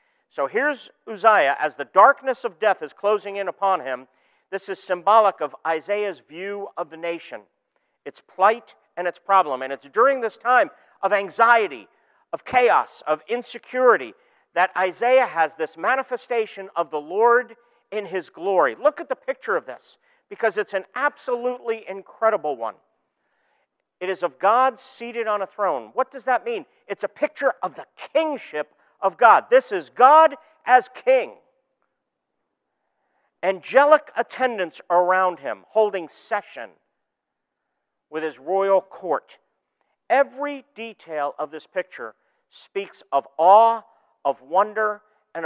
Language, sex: English, male